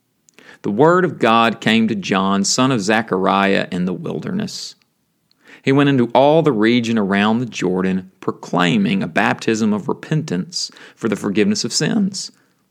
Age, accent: 40-59, American